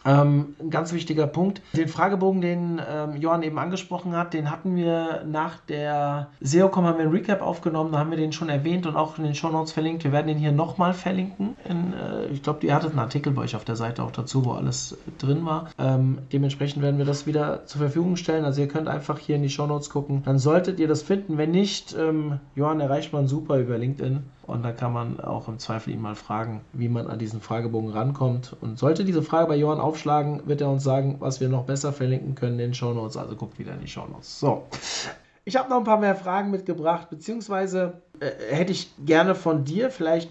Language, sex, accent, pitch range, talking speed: German, male, German, 140-175 Hz, 220 wpm